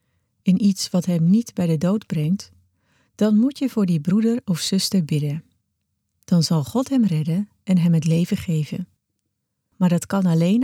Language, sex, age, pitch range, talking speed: Dutch, female, 40-59, 155-205 Hz, 180 wpm